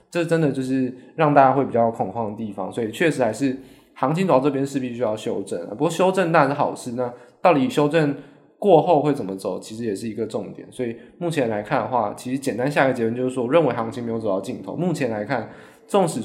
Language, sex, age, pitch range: Chinese, male, 20-39, 115-150 Hz